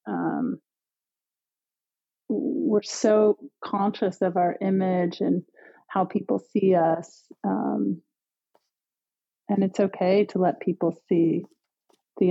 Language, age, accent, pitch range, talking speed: English, 30-49, American, 170-205 Hz, 100 wpm